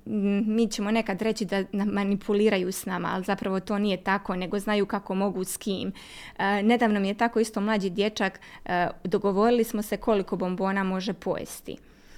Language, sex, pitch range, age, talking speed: Croatian, female, 195-235 Hz, 20-39, 165 wpm